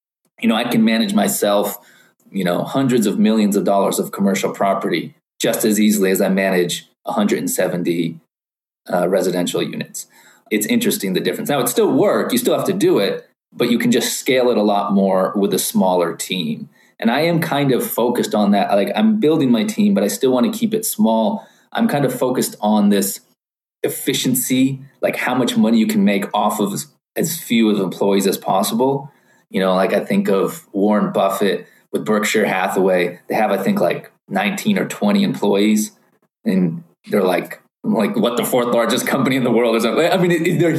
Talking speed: 195 wpm